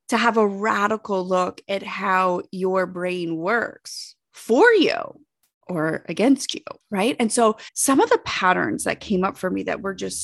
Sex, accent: female, American